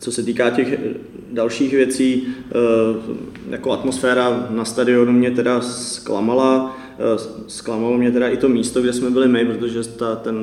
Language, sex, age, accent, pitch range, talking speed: Czech, male, 20-39, native, 105-120 Hz, 145 wpm